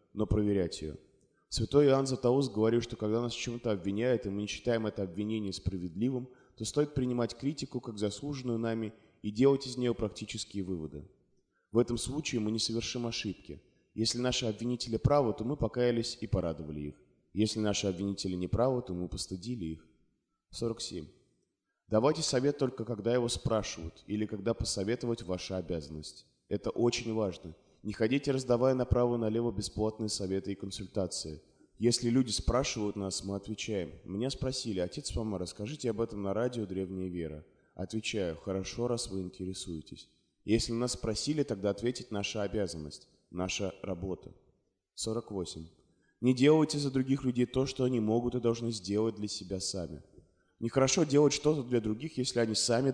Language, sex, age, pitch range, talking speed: Russian, male, 20-39, 95-125 Hz, 155 wpm